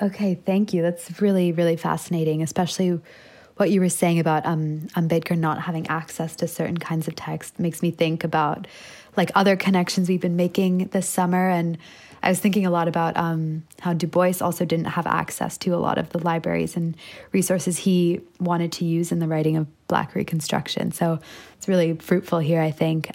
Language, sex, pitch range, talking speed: English, female, 165-185 Hz, 195 wpm